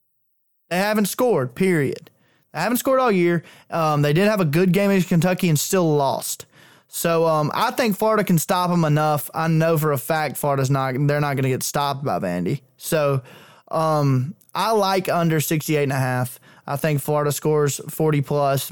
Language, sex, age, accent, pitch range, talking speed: English, male, 20-39, American, 135-160 Hz, 190 wpm